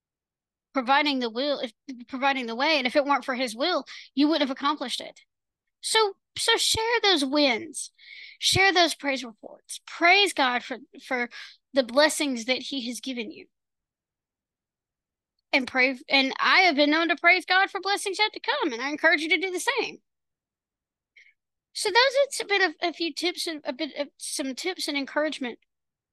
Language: English